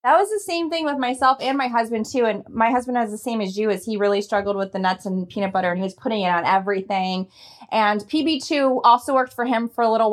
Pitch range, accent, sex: 195-250 Hz, American, female